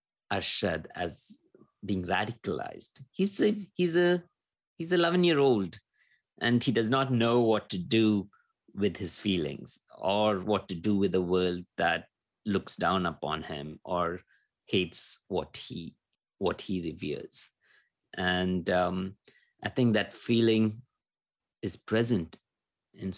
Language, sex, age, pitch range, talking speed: English, male, 50-69, 85-110 Hz, 130 wpm